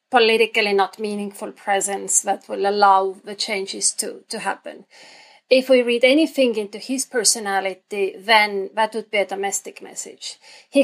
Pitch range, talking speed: 195-260 Hz, 150 wpm